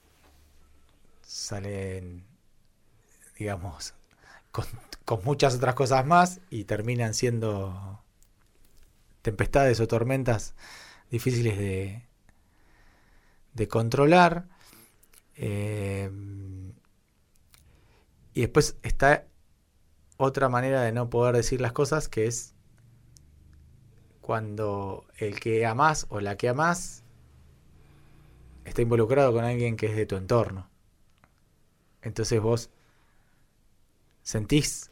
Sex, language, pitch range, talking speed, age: male, Spanish, 100-125 Hz, 90 wpm, 20-39